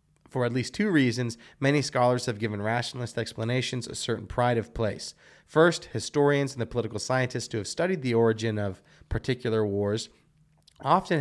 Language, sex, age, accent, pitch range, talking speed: English, male, 30-49, American, 110-140 Hz, 165 wpm